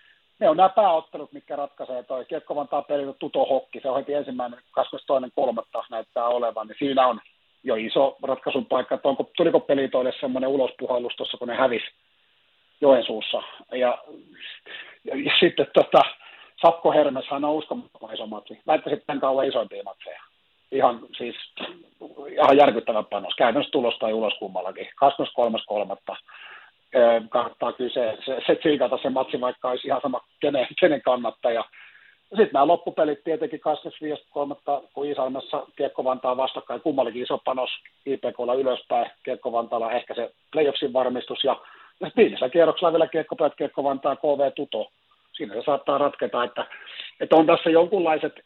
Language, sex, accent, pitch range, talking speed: Finnish, male, native, 130-155 Hz, 135 wpm